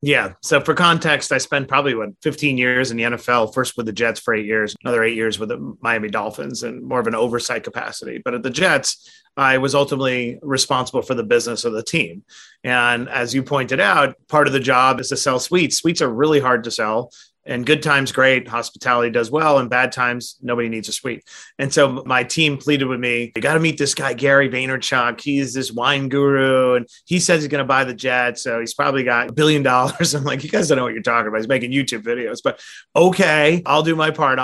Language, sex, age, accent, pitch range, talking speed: English, male, 30-49, American, 120-145 Hz, 230 wpm